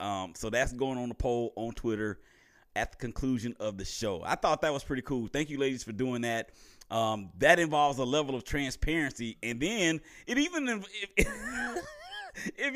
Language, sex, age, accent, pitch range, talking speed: English, male, 30-49, American, 120-165 Hz, 190 wpm